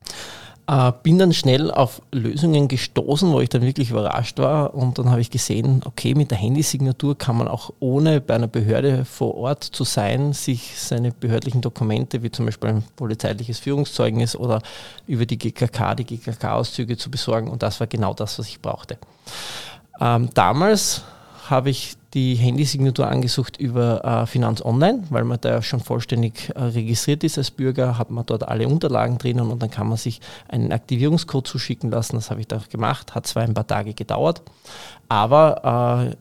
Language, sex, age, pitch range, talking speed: German, male, 20-39, 115-140 Hz, 180 wpm